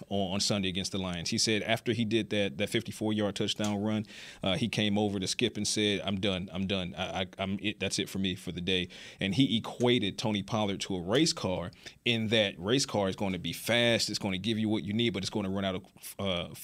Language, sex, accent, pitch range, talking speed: English, male, American, 95-120 Hz, 245 wpm